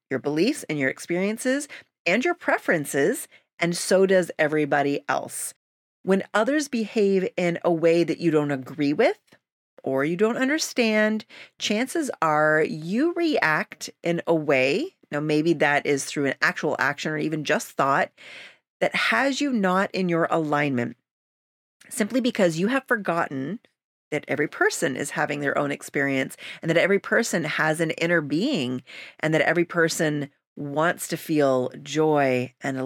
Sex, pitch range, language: female, 145-205 Hz, English